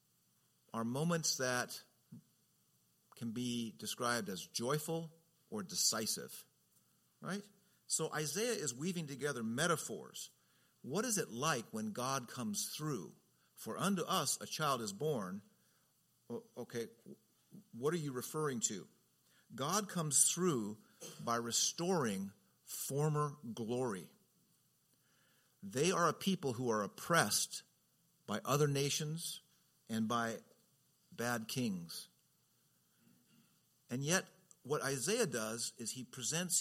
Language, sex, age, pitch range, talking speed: English, male, 50-69, 120-175 Hz, 110 wpm